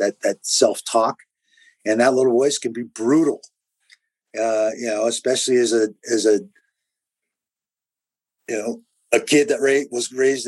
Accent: American